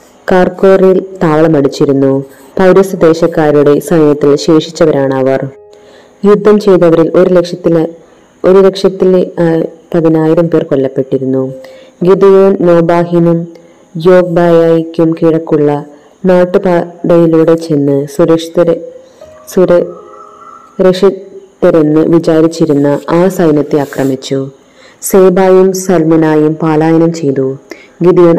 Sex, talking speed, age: female, 65 wpm, 20-39